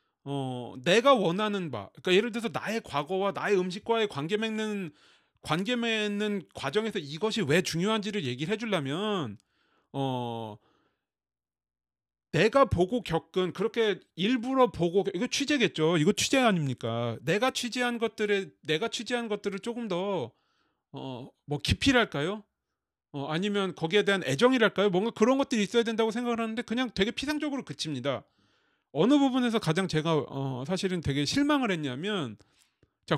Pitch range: 150-225 Hz